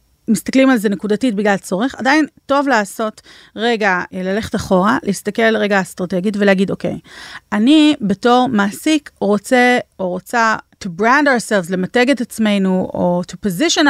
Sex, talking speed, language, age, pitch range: female, 145 wpm, Hebrew, 30-49, 190-230 Hz